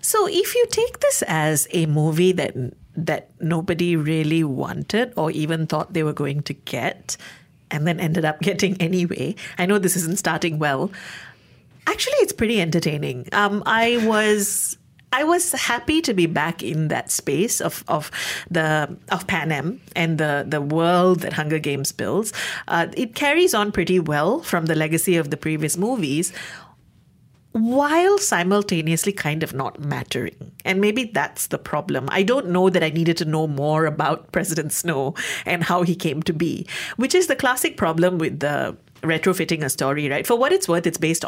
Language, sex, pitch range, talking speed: English, female, 155-210 Hz, 175 wpm